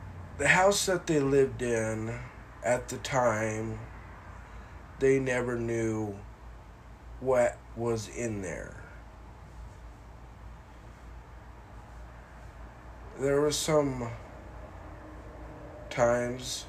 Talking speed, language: 70 wpm, English